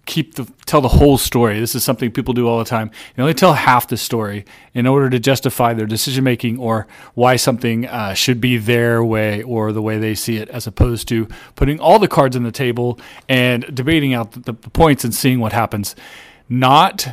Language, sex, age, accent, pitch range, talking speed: English, male, 40-59, American, 115-145 Hz, 215 wpm